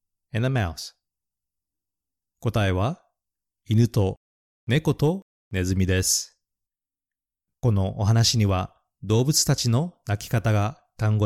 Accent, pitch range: native, 90-115 Hz